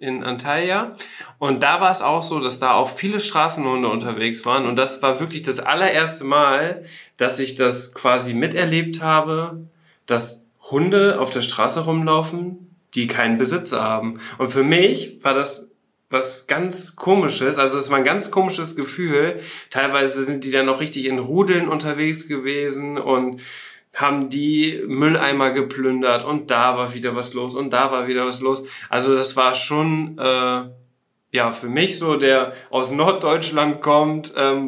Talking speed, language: 165 wpm, German